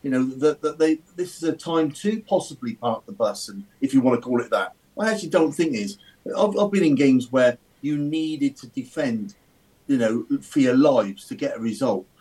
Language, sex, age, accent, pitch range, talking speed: English, male, 50-69, British, 135-200 Hz, 225 wpm